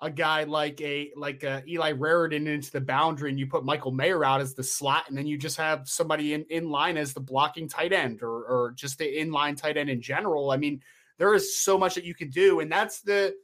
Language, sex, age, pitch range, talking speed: English, male, 20-39, 145-195 Hz, 250 wpm